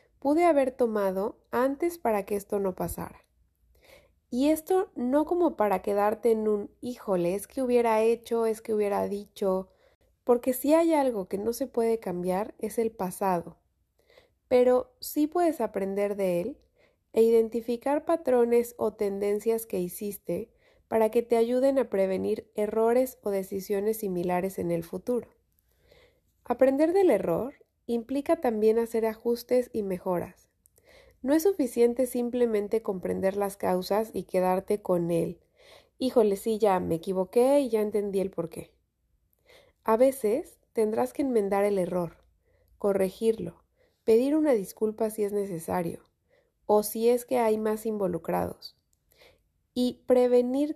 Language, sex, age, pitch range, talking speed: Spanish, female, 30-49, 200-260 Hz, 140 wpm